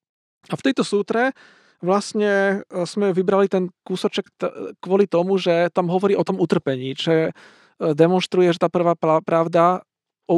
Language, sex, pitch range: Slovak, male, 165-205 Hz